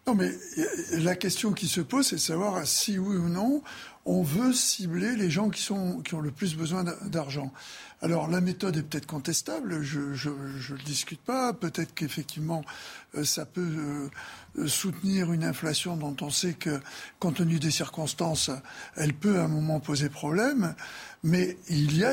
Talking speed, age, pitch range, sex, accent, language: 180 wpm, 60-79, 155-195 Hz, male, French, French